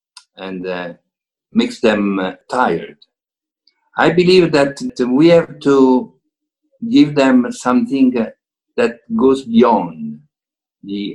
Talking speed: 100 wpm